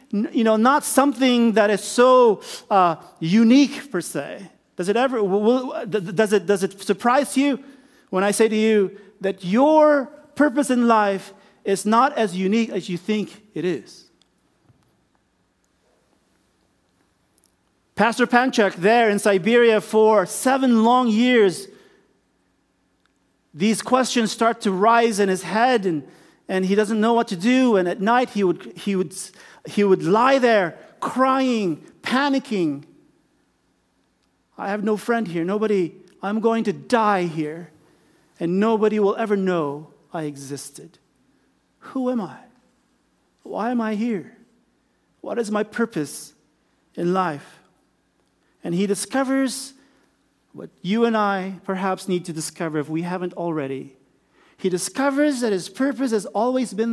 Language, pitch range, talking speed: English, 180-235 Hz, 140 wpm